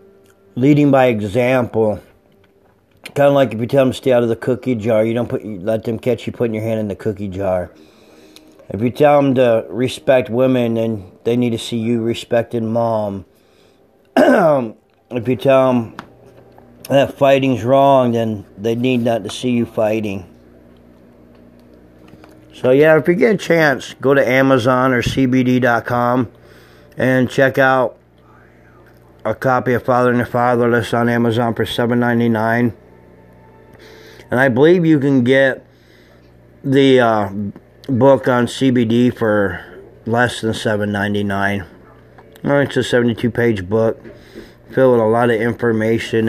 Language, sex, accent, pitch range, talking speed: English, male, American, 110-125 Hz, 150 wpm